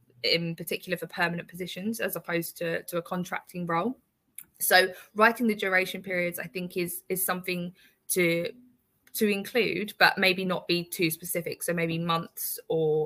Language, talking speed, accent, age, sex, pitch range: English, 160 wpm, British, 20-39, female, 170-195 Hz